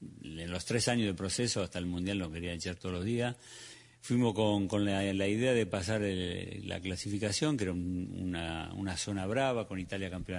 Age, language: 50-69, Spanish